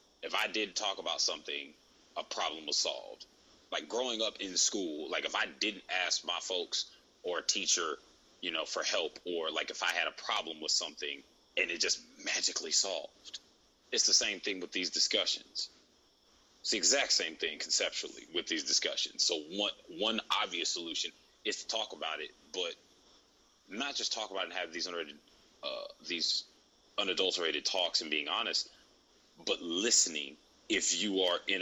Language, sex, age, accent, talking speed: English, male, 30-49, American, 175 wpm